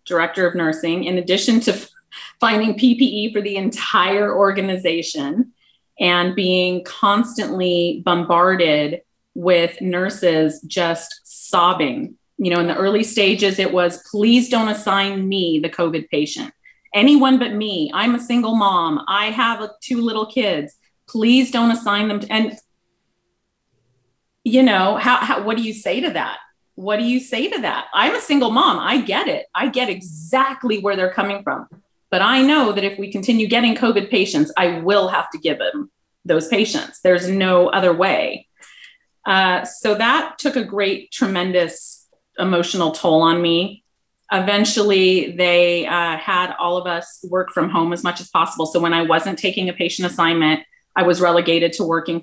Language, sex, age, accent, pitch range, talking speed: English, female, 30-49, American, 175-235 Hz, 165 wpm